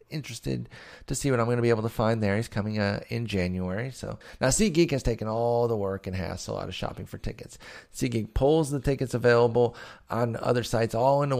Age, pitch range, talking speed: 30-49, 100-125 Hz, 220 wpm